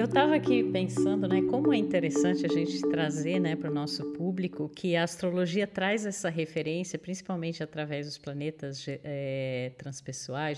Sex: female